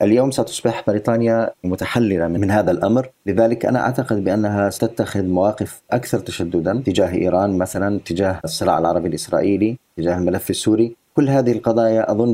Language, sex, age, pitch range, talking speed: Arabic, male, 30-49, 95-115 Hz, 140 wpm